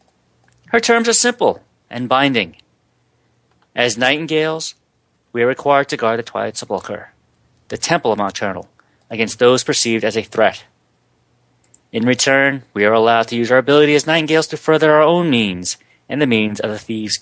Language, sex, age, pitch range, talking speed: English, male, 30-49, 90-125 Hz, 165 wpm